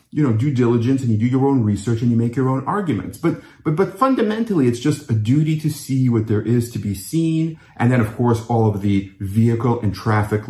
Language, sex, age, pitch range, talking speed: English, male, 30-49, 100-130 Hz, 240 wpm